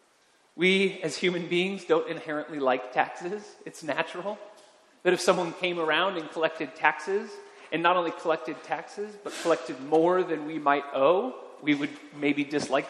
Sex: male